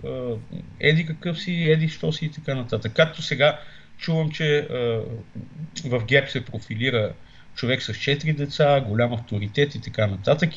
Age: 50-69